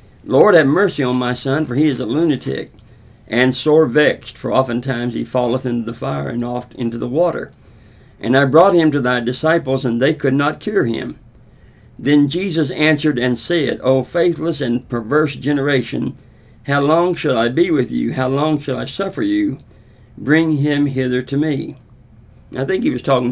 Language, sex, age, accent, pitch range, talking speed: English, male, 60-79, American, 120-150 Hz, 185 wpm